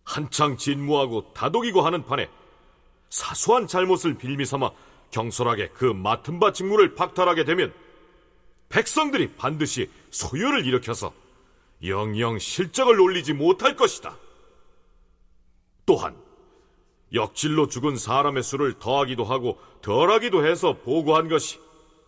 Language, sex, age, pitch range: Korean, male, 40-59, 130-185 Hz